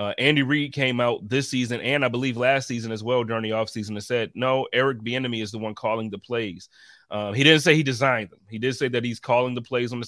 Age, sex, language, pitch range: 30-49, male, English, 115-140 Hz